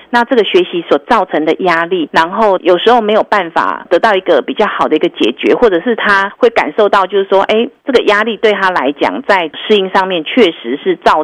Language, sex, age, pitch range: Chinese, female, 40-59, 185-250 Hz